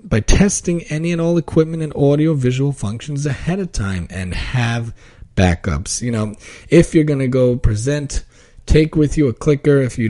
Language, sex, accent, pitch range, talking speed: English, male, American, 115-145 Hz, 180 wpm